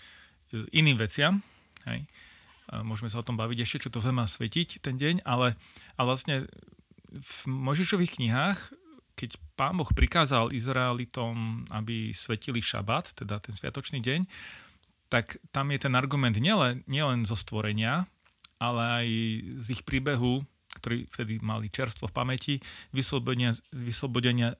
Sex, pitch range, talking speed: male, 115-140 Hz, 130 wpm